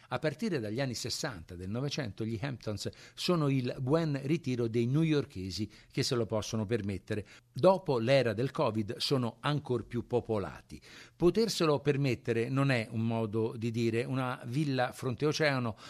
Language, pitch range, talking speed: Italian, 115-145 Hz, 145 wpm